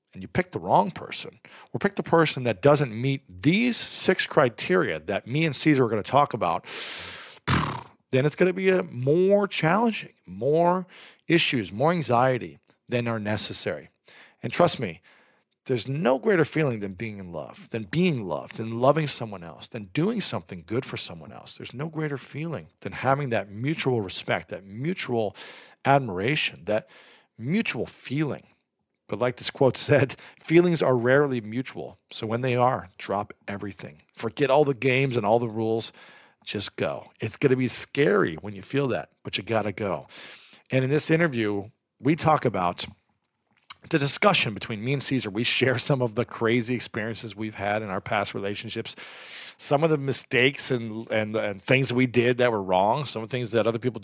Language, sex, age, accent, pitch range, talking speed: English, male, 40-59, American, 110-145 Hz, 185 wpm